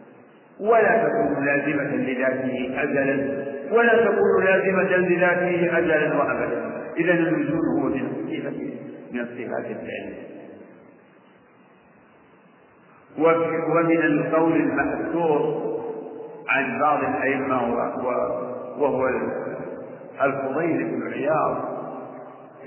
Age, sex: 50-69, male